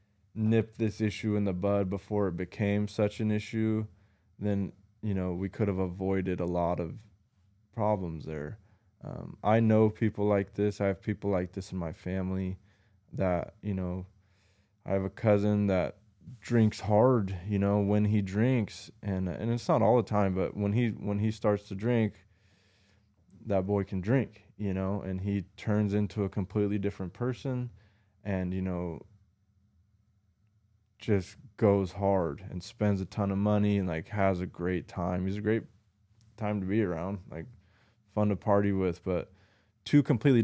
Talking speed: 170 wpm